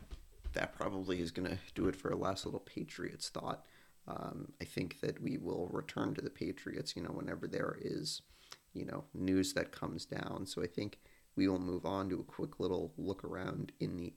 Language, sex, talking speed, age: English, male, 205 wpm, 40-59